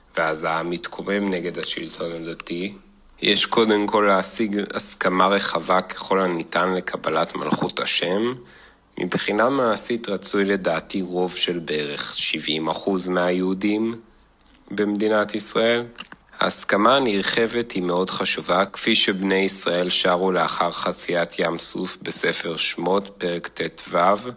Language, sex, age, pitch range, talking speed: Hebrew, male, 30-49, 85-100 Hz, 110 wpm